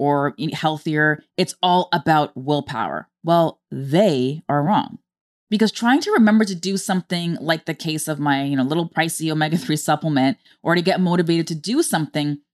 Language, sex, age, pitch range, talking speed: English, female, 20-39, 155-220 Hz, 170 wpm